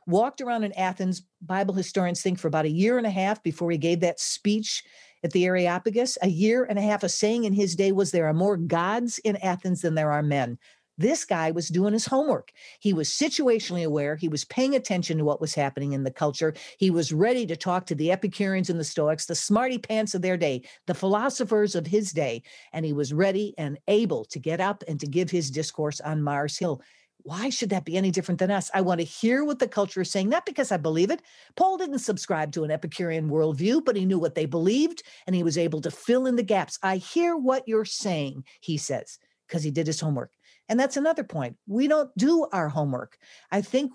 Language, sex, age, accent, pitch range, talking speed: English, female, 50-69, American, 165-220 Hz, 230 wpm